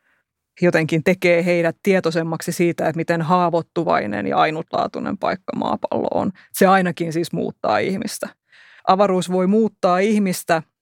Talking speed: 120 wpm